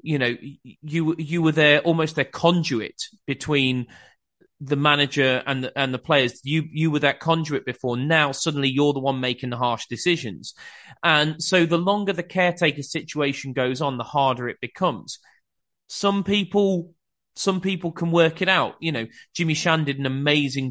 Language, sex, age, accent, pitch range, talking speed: English, male, 30-49, British, 135-165 Hz, 175 wpm